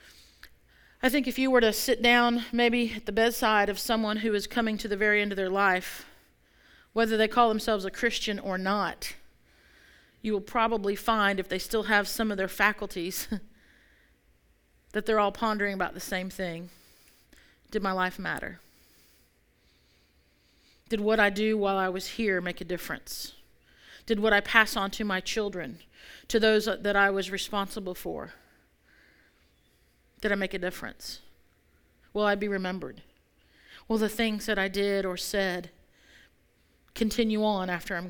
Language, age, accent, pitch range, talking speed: English, 40-59, American, 180-225 Hz, 160 wpm